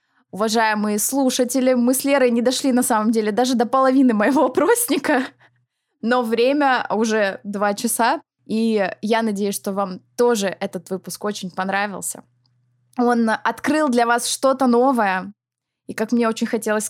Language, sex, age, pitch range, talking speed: Russian, female, 20-39, 185-230 Hz, 145 wpm